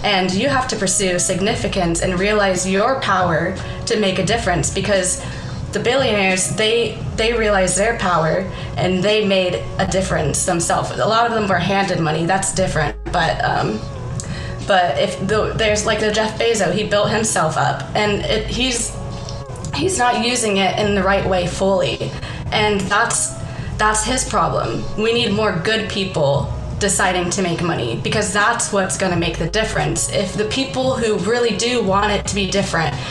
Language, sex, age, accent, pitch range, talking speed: English, female, 20-39, American, 180-210 Hz, 175 wpm